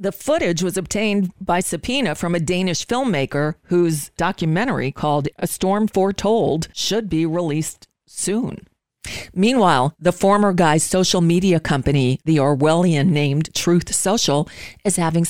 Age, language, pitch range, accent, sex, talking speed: 40-59, English, 155-195 Hz, American, female, 135 wpm